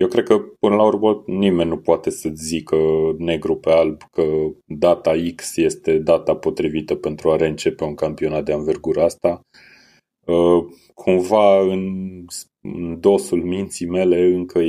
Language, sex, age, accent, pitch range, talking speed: Romanian, male, 30-49, native, 80-90 Hz, 140 wpm